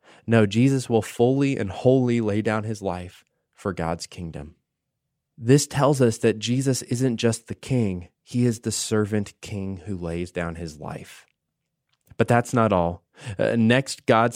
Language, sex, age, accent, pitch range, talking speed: English, male, 20-39, American, 105-135 Hz, 160 wpm